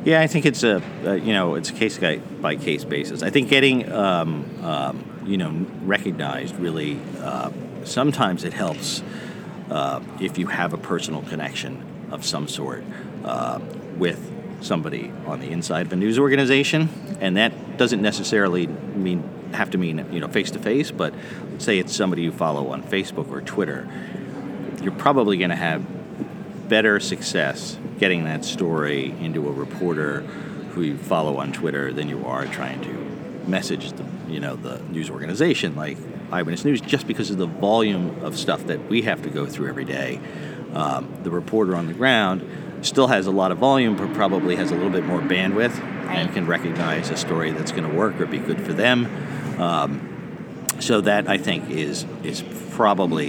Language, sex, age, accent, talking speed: English, male, 50-69, American, 175 wpm